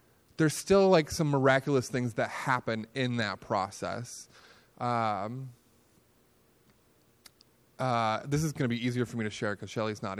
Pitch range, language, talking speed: 115-135 Hz, English, 155 wpm